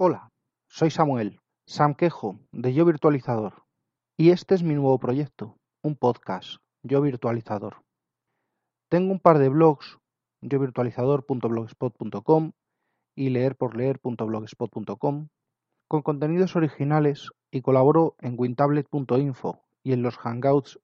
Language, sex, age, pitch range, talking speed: Spanish, male, 30-49, 120-155 Hz, 105 wpm